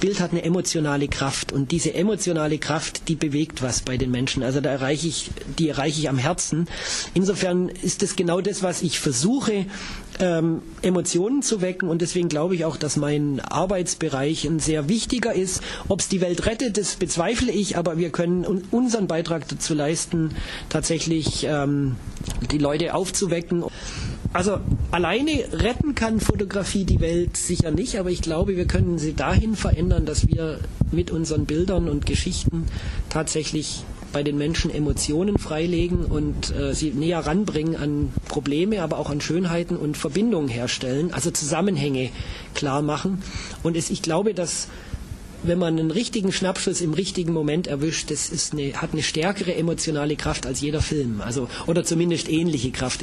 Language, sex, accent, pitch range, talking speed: German, male, German, 145-175 Hz, 165 wpm